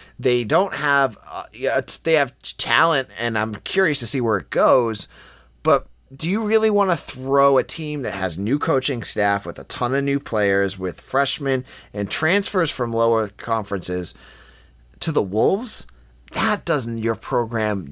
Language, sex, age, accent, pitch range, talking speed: English, male, 30-49, American, 100-145 Hz, 165 wpm